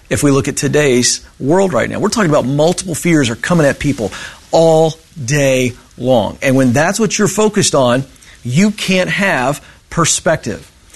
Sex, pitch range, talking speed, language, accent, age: male, 135-185 Hz, 170 wpm, English, American, 40-59